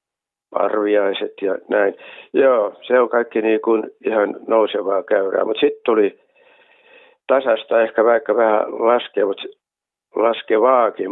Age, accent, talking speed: 60-79, native, 115 wpm